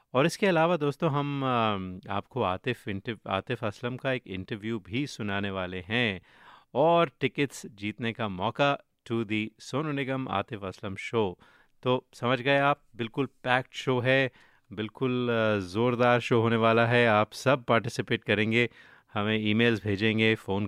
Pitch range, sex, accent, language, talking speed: 105-130 Hz, male, native, Hindi, 150 wpm